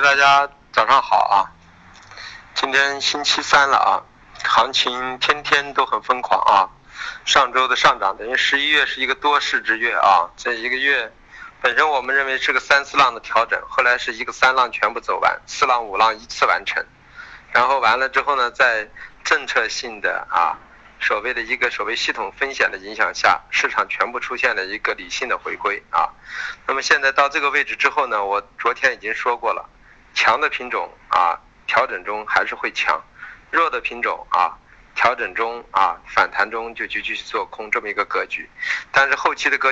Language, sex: Chinese, male